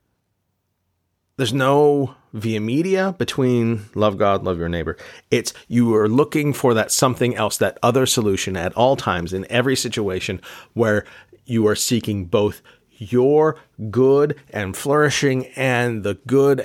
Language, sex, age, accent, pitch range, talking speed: English, male, 40-59, American, 105-130 Hz, 140 wpm